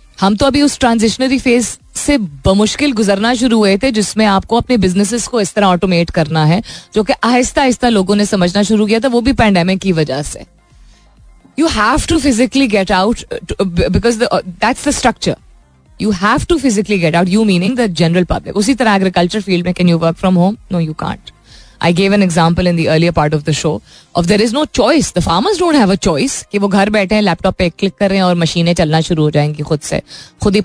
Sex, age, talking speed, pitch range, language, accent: female, 20-39, 215 wpm, 175-245 Hz, Hindi, native